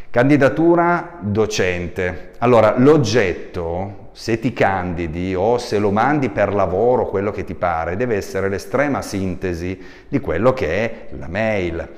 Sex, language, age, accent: male, Italian, 40-59, native